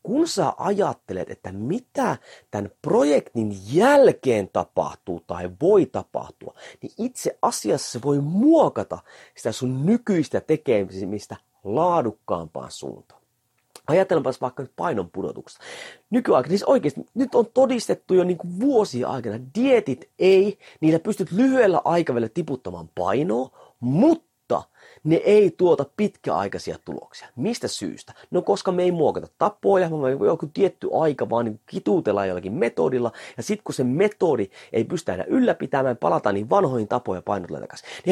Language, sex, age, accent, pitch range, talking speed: Finnish, male, 30-49, native, 125-210 Hz, 130 wpm